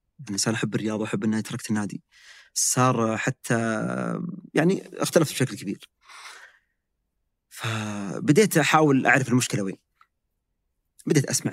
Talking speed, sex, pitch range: 105 wpm, male, 110-150 Hz